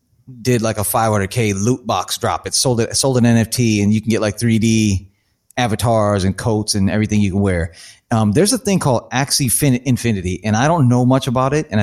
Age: 30-49